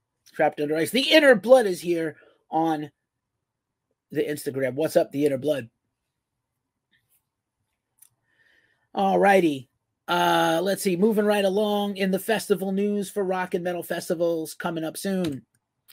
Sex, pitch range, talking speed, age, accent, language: male, 155-225 Hz, 135 wpm, 30-49, American, English